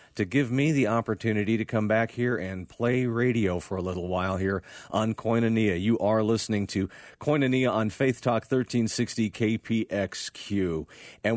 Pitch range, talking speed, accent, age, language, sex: 100-125 Hz, 160 wpm, American, 40-59, English, male